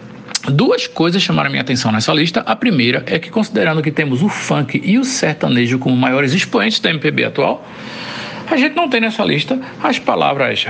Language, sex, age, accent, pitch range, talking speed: Portuguese, male, 60-79, Brazilian, 130-210 Hz, 185 wpm